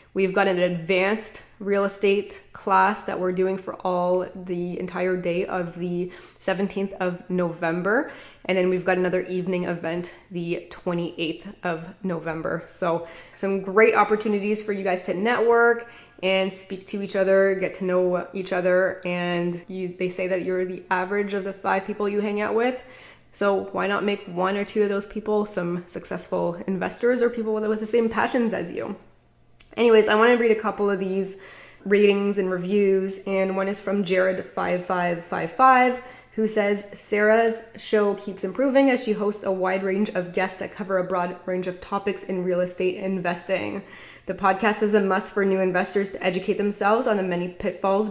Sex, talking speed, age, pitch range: female, 185 wpm, 20-39, 185-205 Hz